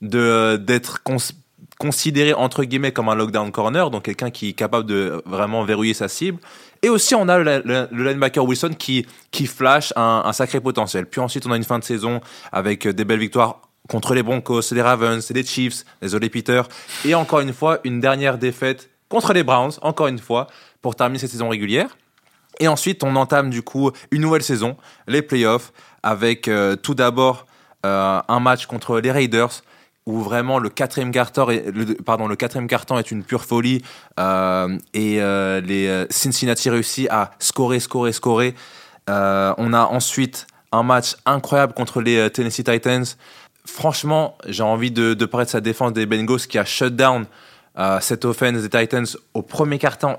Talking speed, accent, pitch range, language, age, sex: 180 wpm, French, 110-130 Hz, French, 20-39, male